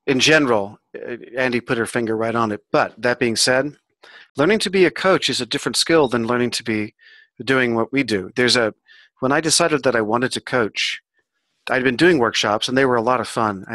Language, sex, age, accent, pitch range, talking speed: English, male, 40-59, American, 110-135 Hz, 225 wpm